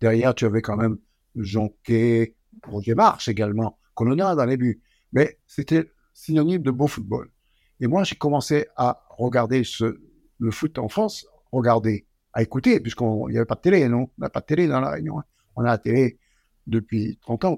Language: French